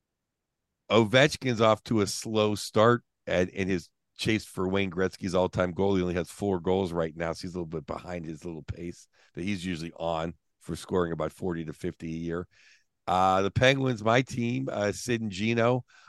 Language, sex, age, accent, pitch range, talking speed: English, male, 50-69, American, 95-115 Hz, 200 wpm